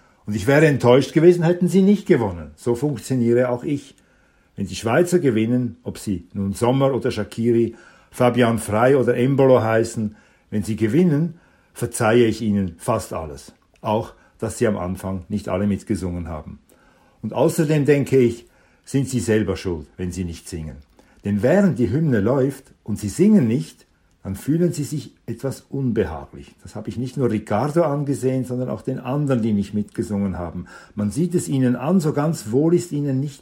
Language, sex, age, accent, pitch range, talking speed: German, male, 60-79, German, 100-140 Hz, 175 wpm